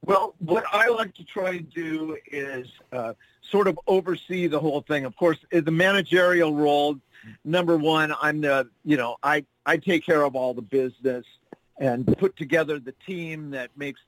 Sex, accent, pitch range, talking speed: male, American, 130-165 Hz, 180 wpm